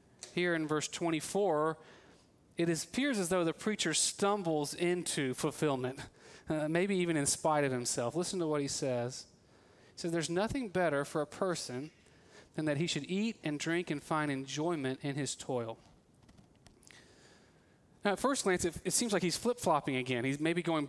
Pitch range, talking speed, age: 130-175 Hz, 175 wpm, 40-59